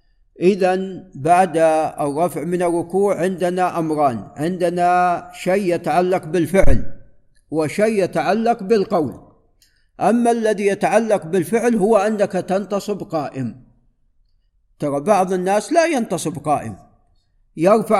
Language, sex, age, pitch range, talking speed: Arabic, male, 50-69, 150-200 Hz, 95 wpm